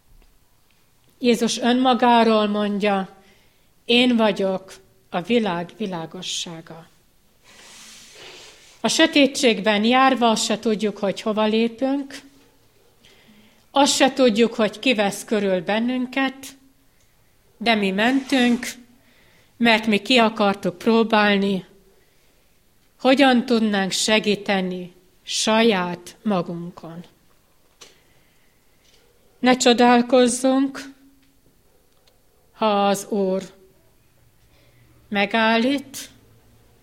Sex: female